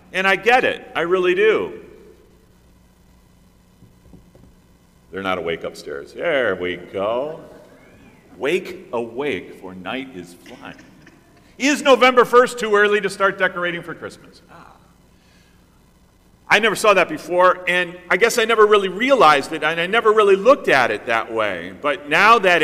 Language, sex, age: English, male, 40-59